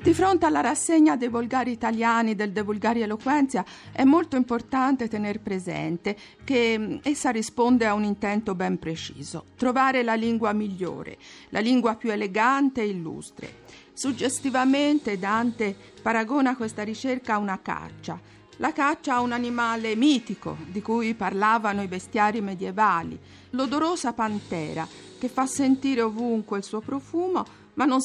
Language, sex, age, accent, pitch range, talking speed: Italian, female, 50-69, native, 200-260 Hz, 140 wpm